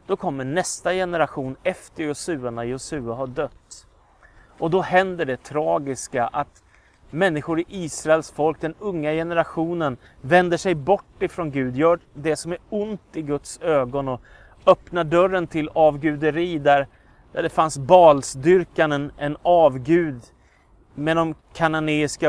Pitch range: 130-175 Hz